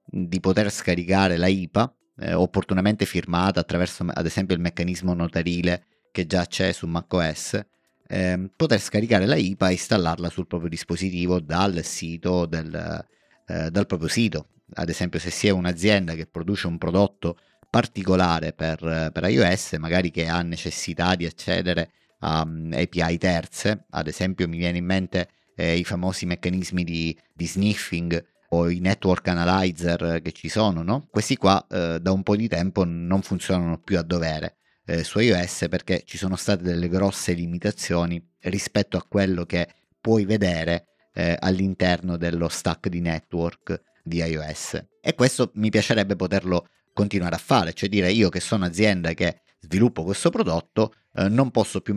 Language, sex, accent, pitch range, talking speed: Italian, male, native, 85-95 Hz, 155 wpm